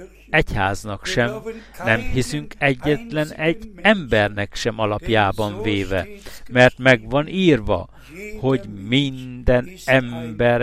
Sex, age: male, 60-79